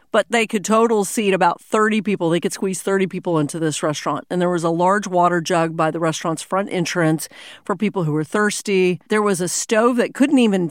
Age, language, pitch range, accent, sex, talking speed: 40-59, English, 170-215 Hz, American, female, 225 wpm